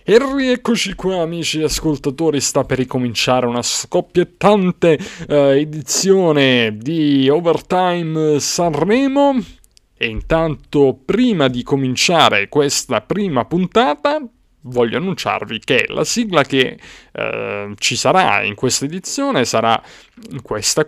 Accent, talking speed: native, 105 wpm